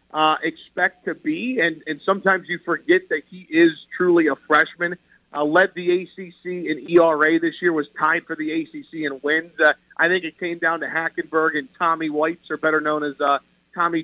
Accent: American